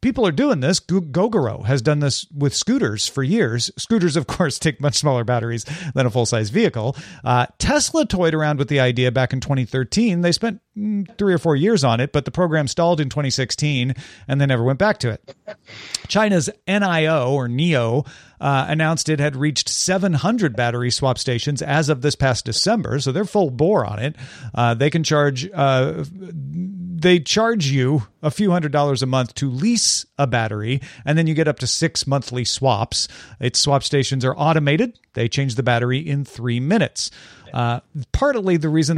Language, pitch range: English, 125-170 Hz